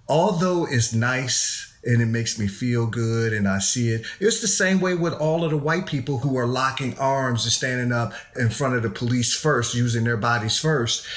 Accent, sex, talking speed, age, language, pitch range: American, male, 215 wpm, 40-59, English, 120-155 Hz